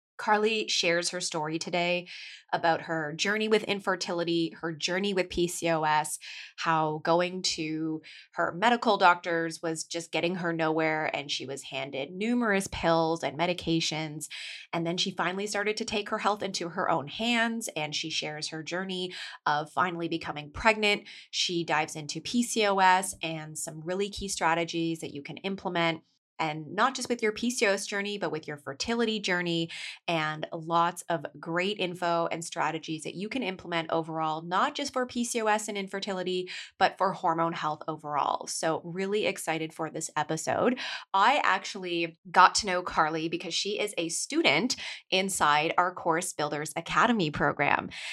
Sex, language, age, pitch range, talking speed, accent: female, English, 20-39, 160-200 Hz, 155 wpm, American